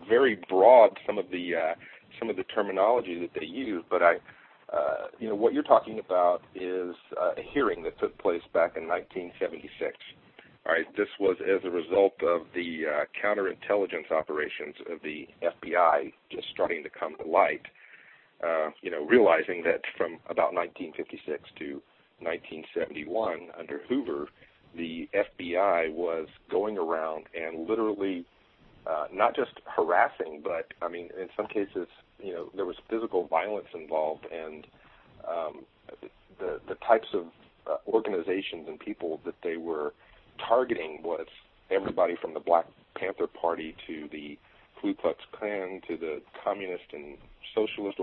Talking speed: 150 wpm